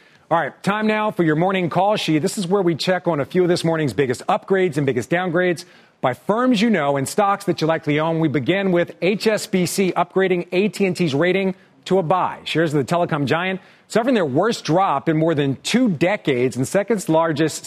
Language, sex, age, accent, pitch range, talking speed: English, male, 40-59, American, 155-195 Hz, 210 wpm